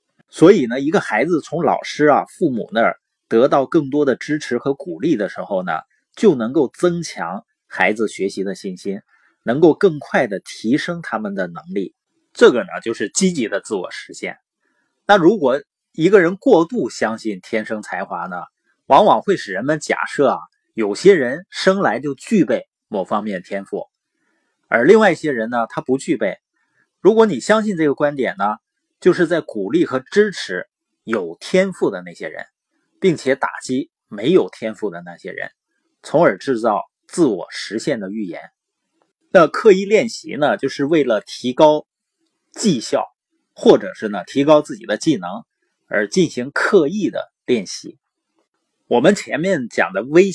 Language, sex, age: Chinese, male, 30-49